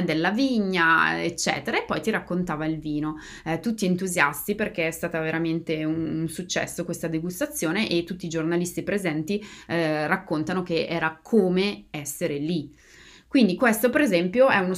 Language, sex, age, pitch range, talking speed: Italian, female, 20-39, 160-190 Hz, 155 wpm